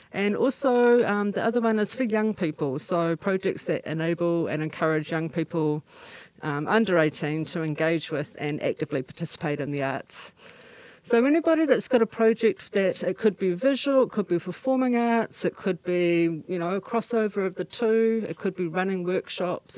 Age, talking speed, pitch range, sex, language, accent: 40-59, 185 wpm, 160-200 Hz, female, English, Australian